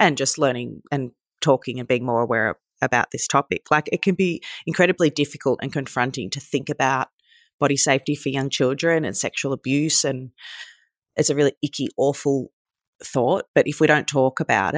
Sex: female